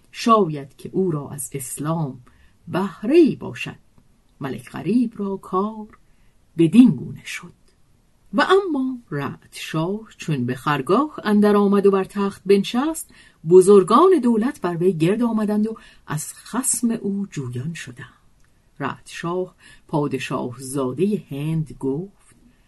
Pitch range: 155-220 Hz